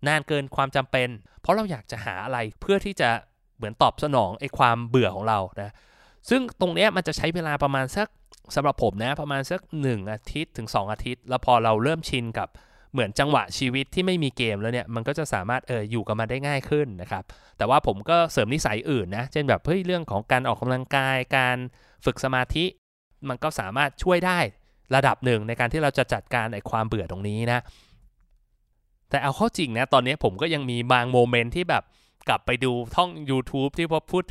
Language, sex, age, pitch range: Thai, male, 20-39, 120-165 Hz